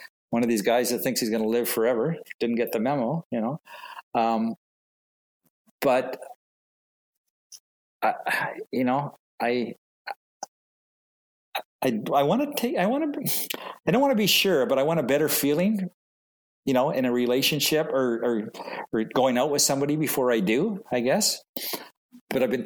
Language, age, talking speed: English, 50-69, 165 wpm